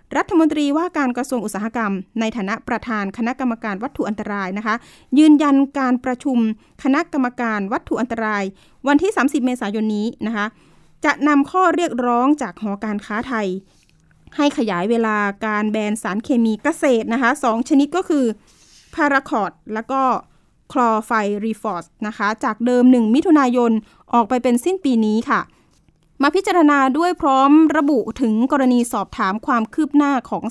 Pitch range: 215-280 Hz